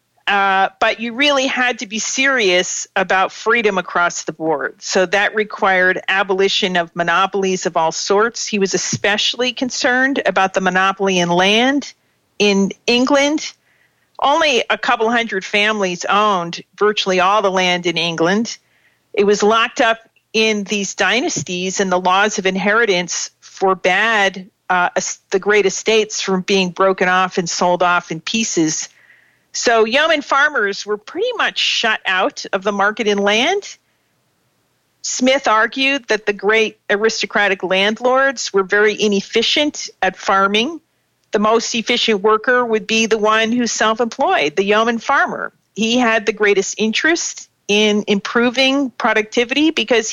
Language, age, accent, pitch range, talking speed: English, 50-69, American, 195-235 Hz, 140 wpm